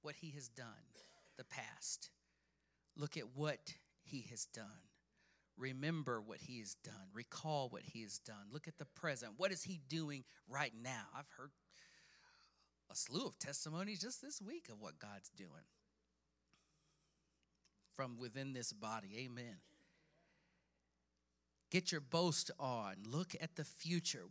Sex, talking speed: male, 145 wpm